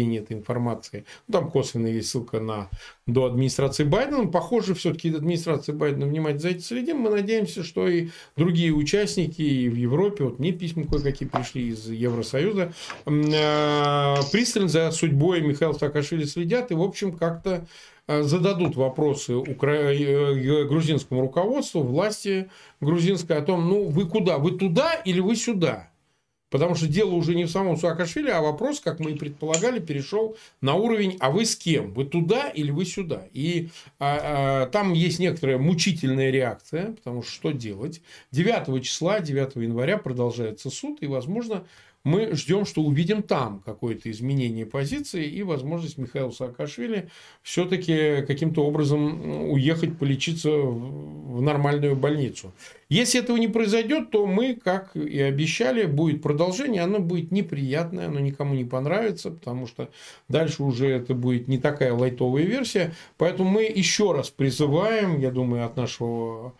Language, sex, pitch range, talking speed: Russian, male, 135-185 Hz, 145 wpm